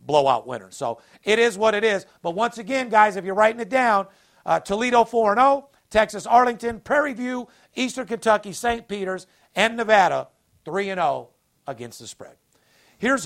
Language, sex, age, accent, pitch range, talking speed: English, male, 50-69, American, 165-220 Hz, 165 wpm